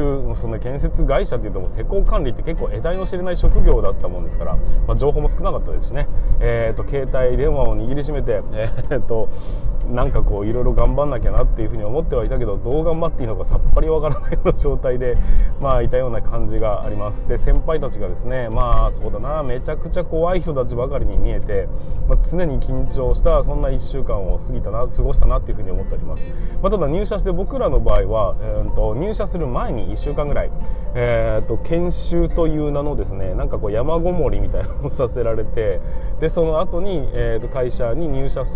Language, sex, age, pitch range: Japanese, male, 20-39, 110-150 Hz